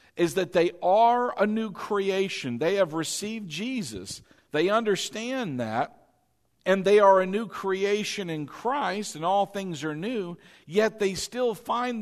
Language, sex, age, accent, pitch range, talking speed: English, male, 50-69, American, 180-240 Hz, 155 wpm